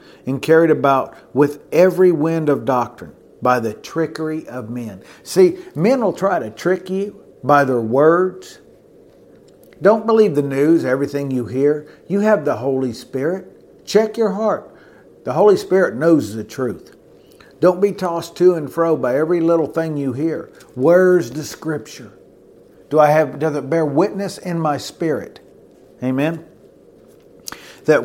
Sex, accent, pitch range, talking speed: male, American, 130-180 Hz, 150 wpm